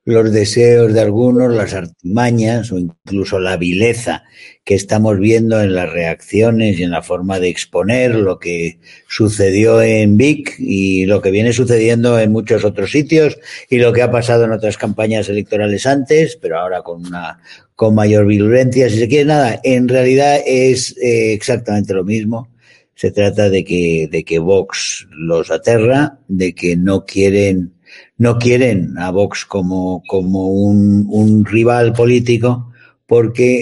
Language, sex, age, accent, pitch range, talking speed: Spanish, male, 50-69, Spanish, 95-120 Hz, 155 wpm